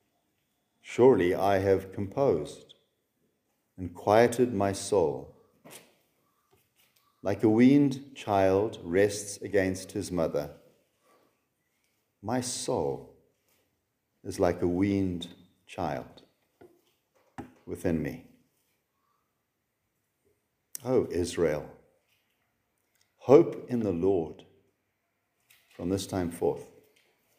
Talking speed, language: 75 wpm, English